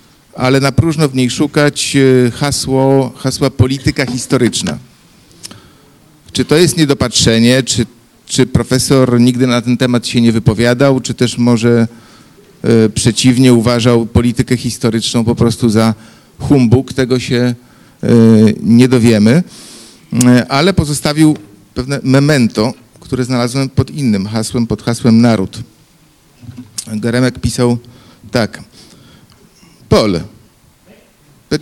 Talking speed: 100 wpm